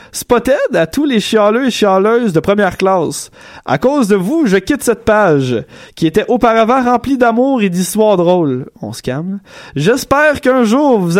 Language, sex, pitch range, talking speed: French, male, 175-225 Hz, 175 wpm